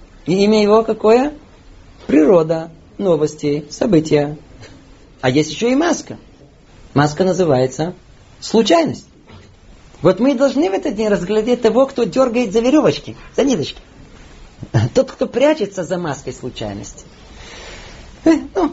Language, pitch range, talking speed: Russian, 155-225 Hz, 120 wpm